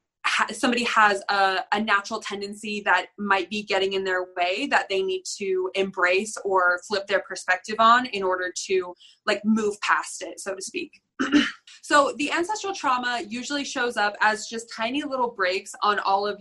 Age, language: 20-39, English